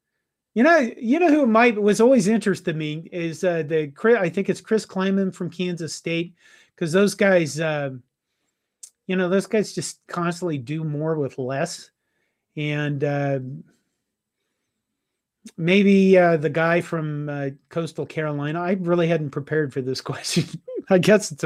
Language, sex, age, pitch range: English, male, 40-59, 155-205 Hz